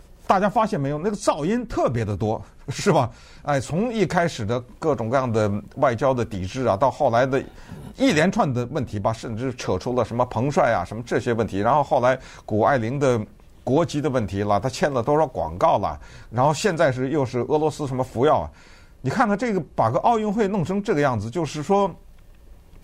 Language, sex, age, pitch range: Chinese, male, 50-69, 110-155 Hz